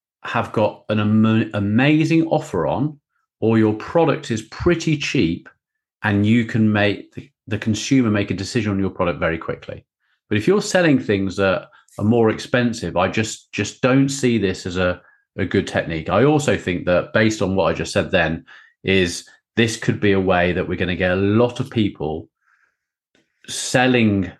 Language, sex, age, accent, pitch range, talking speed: English, male, 40-59, British, 95-135 Hz, 180 wpm